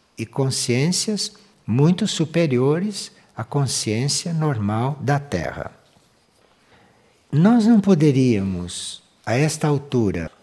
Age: 60-79